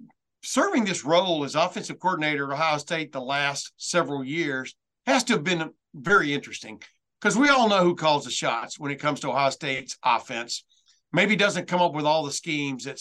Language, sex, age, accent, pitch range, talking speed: English, male, 60-79, American, 140-170 Hz, 200 wpm